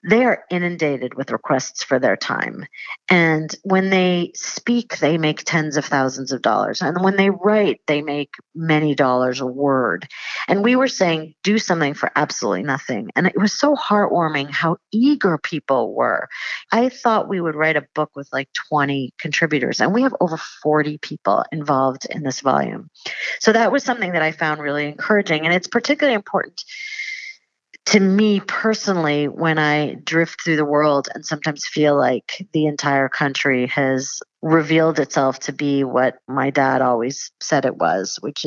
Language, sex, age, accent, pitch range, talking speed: English, female, 40-59, American, 140-185 Hz, 170 wpm